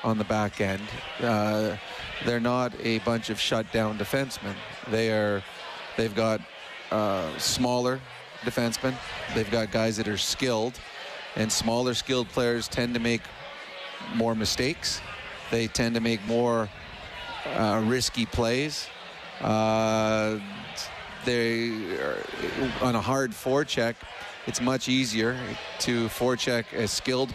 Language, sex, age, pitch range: English, male, 30-49, 110-130 Hz